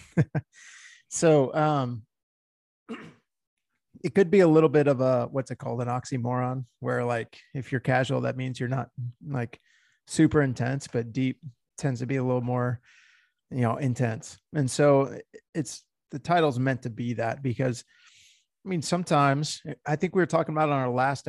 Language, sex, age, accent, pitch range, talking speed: English, male, 30-49, American, 125-150 Hz, 170 wpm